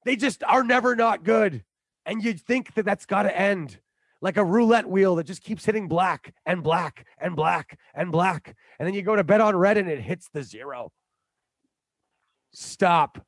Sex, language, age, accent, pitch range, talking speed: male, English, 30-49, American, 160-205 Hz, 195 wpm